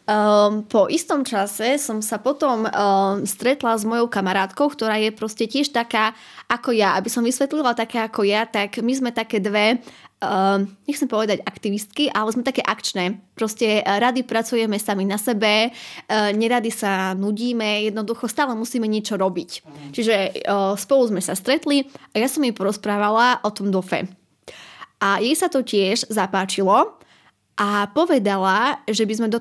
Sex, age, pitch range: female, 20-39, 210-250 Hz